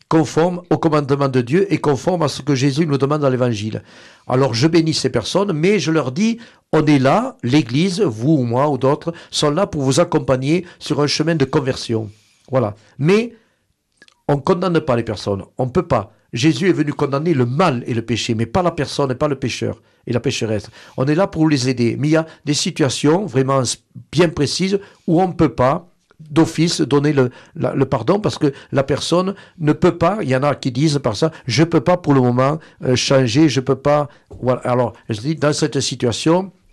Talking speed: 220 wpm